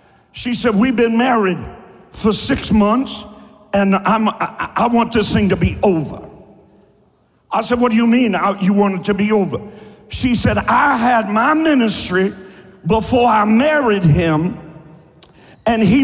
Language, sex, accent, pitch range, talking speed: English, male, American, 180-235 Hz, 155 wpm